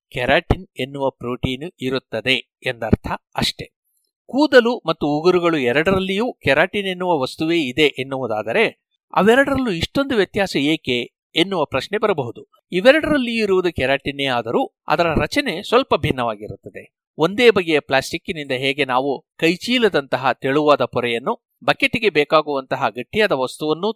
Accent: native